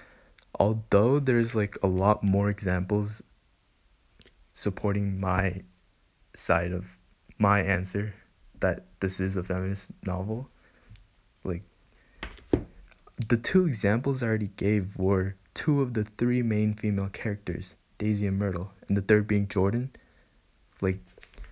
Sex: male